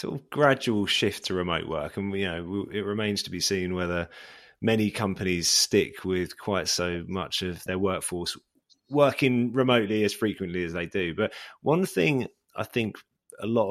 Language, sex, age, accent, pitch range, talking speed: English, male, 20-39, British, 95-120 Hz, 165 wpm